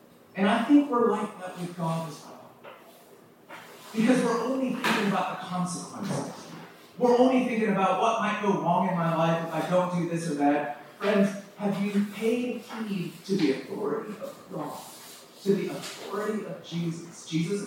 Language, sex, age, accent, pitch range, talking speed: English, male, 30-49, American, 170-215 Hz, 175 wpm